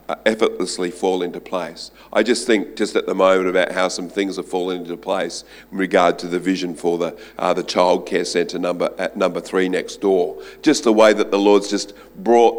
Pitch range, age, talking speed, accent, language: 95-115 Hz, 50-69, 210 wpm, Australian, English